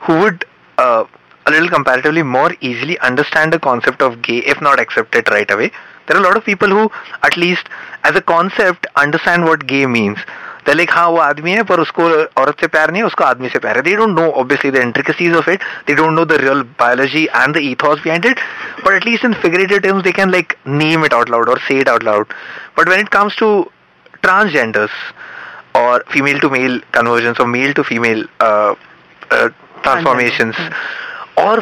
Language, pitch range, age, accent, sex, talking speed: Hindi, 135-190 Hz, 30-49, native, male, 200 wpm